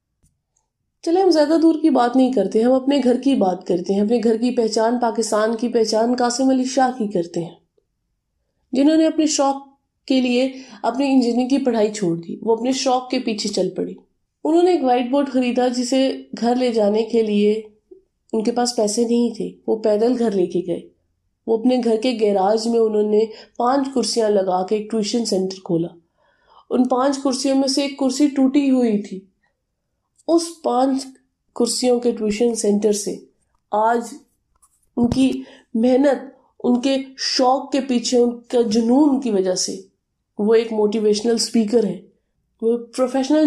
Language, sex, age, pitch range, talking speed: Urdu, female, 20-39, 215-265 Hz, 175 wpm